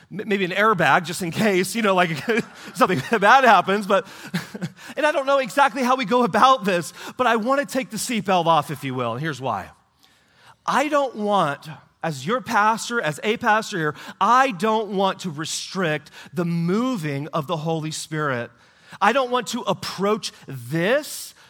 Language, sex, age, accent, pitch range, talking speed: English, male, 30-49, American, 155-240 Hz, 180 wpm